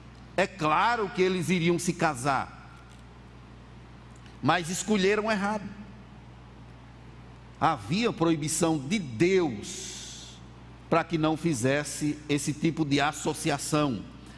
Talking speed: 90 wpm